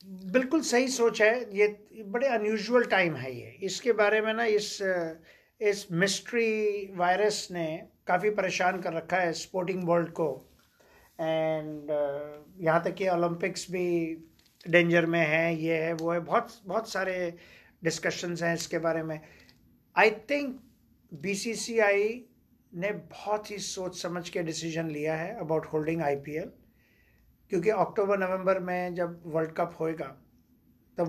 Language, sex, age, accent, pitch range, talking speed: Hindi, male, 50-69, native, 160-195 Hz, 140 wpm